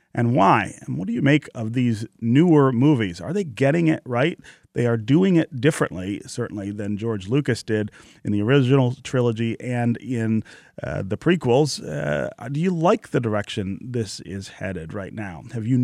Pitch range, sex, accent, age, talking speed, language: 110-140 Hz, male, American, 30-49, 180 wpm, English